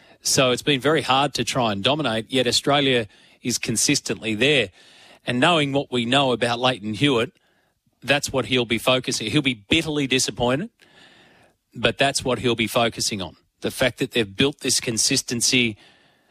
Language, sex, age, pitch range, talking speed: English, male, 30-49, 120-145 Hz, 170 wpm